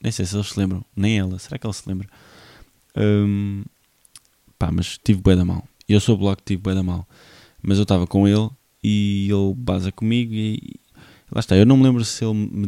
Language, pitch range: Portuguese, 95-110 Hz